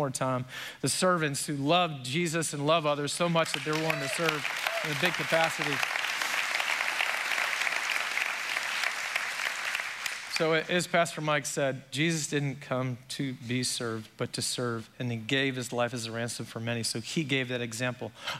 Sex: male